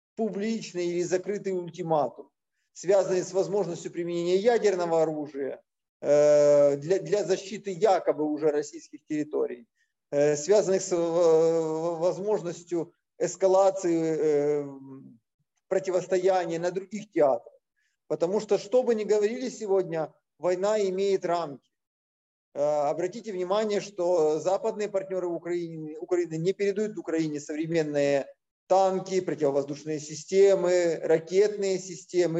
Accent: native